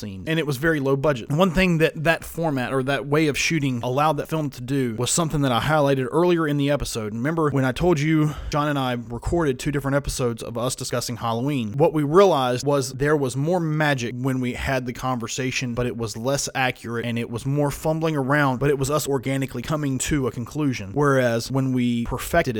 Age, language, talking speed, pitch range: 30-49, English, 220 wpm, 125-155 Hz